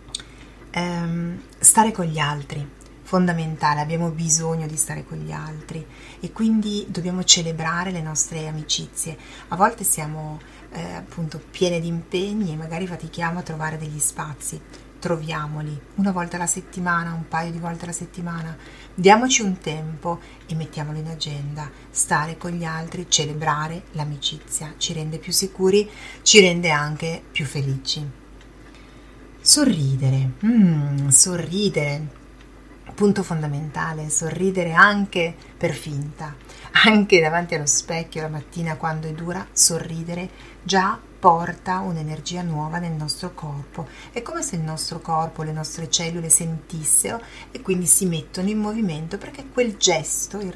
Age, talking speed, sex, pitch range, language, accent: 30-49, 135 wpm, female, 155-180 Hz, Italian, native